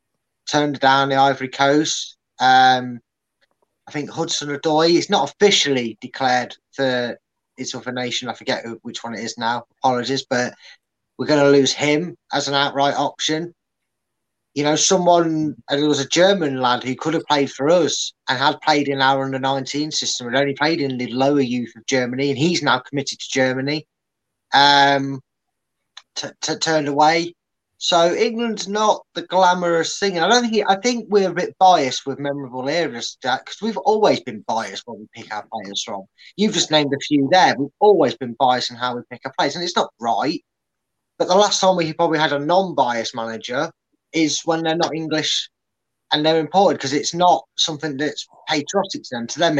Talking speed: 190 wpm